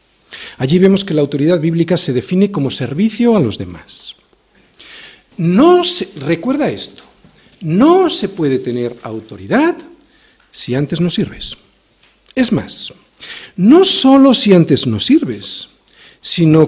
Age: 50-69